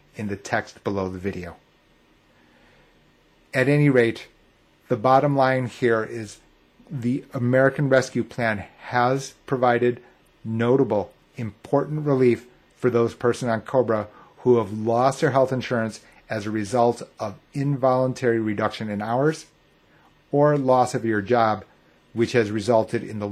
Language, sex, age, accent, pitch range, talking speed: English, male, 30-49, American, 105-130 Hz, 135 wpm